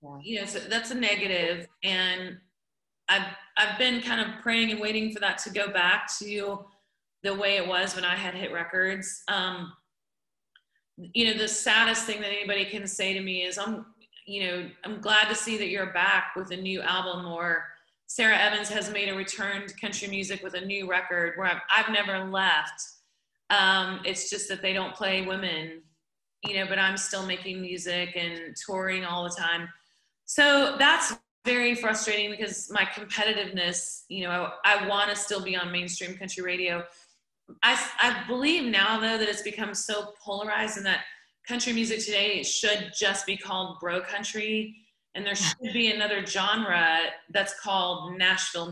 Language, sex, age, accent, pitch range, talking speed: English, female, 30-49, American, 180-210 Hz, 175 wpm